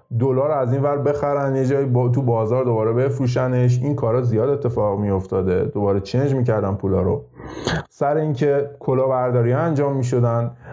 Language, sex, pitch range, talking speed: Persian, male, 110-135 Hz, 155 wpm